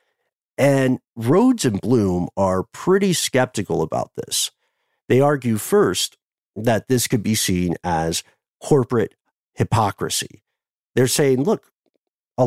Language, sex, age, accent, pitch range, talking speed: English, male, 50-69, American, 100-155 Hz, 115 wpm